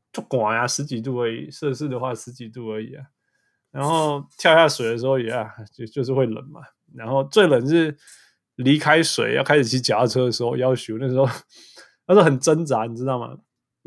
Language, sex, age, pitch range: Chinese, male, 20-39, 120-155 Hz